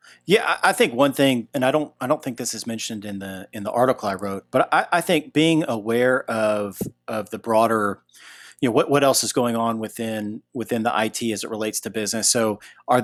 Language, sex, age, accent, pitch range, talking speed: English, male, 40-59, American, 105-125 Hz, 230 wpm